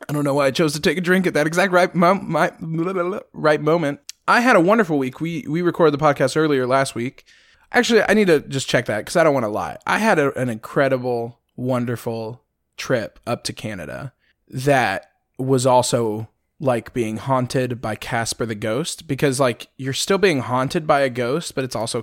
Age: 20-39